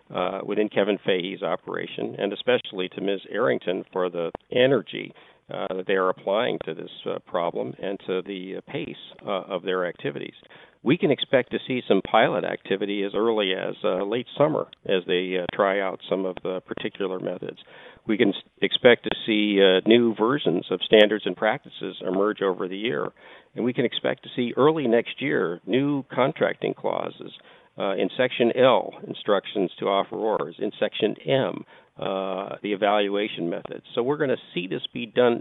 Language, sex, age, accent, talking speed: English, male, 50-69, American, 180 wpm